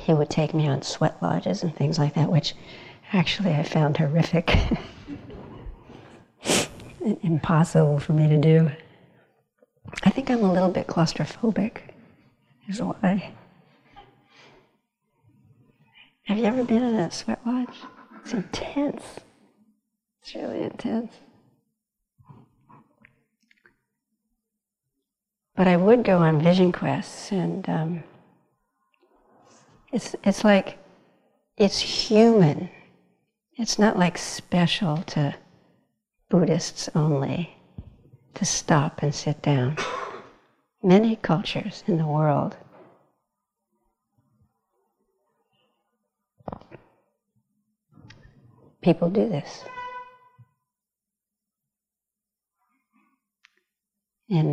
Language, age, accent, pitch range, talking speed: English, 50-69, American, 155-215 Hz, 85 wpm